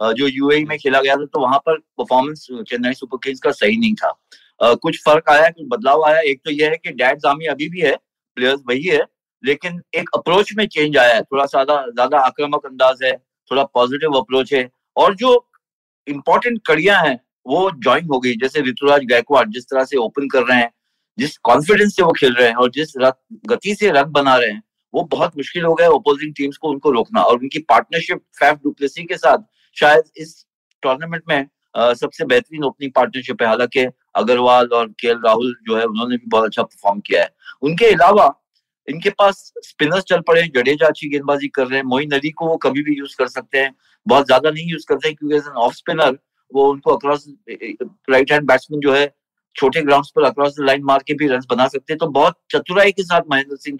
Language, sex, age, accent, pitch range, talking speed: Hindi, male, 30-49, native, 130-160 Hz, 205 wpm